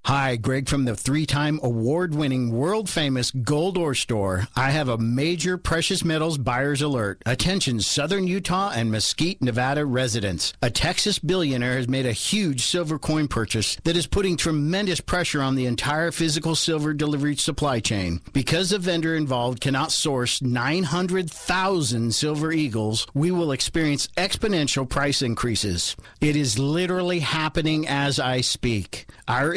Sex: male